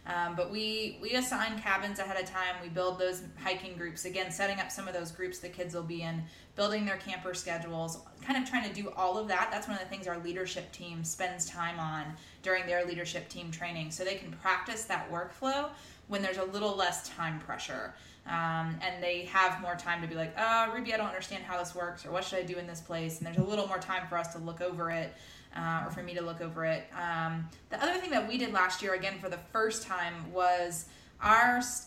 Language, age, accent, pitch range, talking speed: English, 20-39, American, 170-200 Hz, 240 wpm